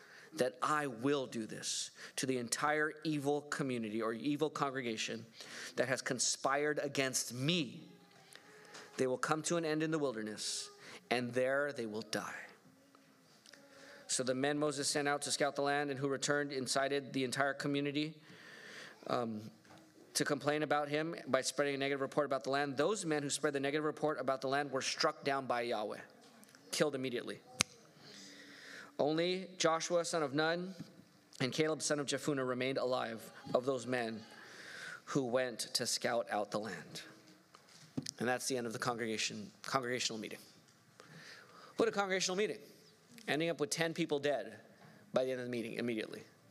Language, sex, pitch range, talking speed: English, male, 130-150 Hz, 165 wpm